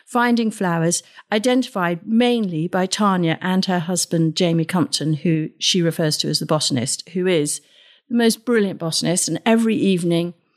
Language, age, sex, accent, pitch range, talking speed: English, 50-69, female, British, 165-220 Hz, 155 wpm